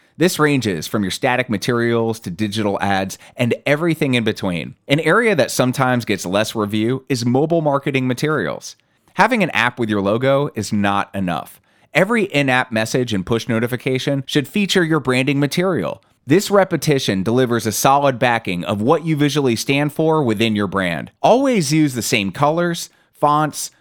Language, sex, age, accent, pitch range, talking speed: English, male, 30-49, American, 110-155 Hz, 165 wpm